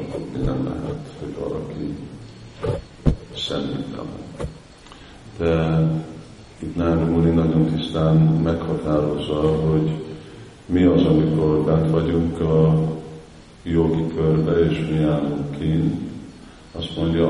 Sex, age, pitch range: male, 50-69, 75-85 Hz